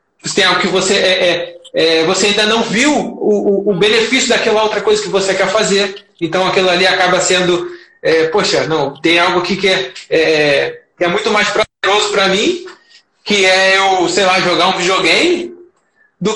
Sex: male